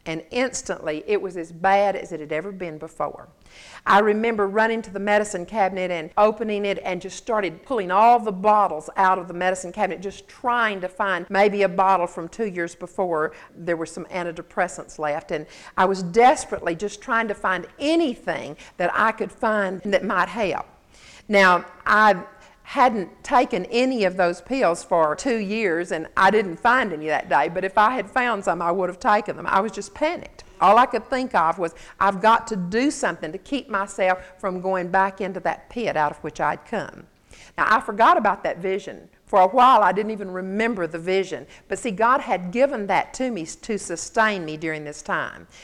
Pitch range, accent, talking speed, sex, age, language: 180-220 Hz, American, 200 wpm, female, 50-69, English